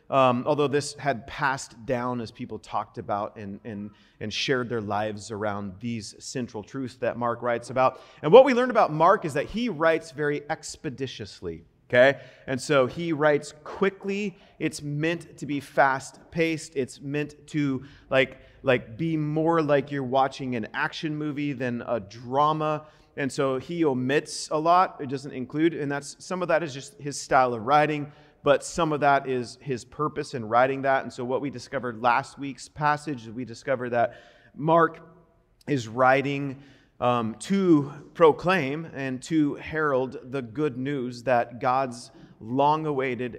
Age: 30-49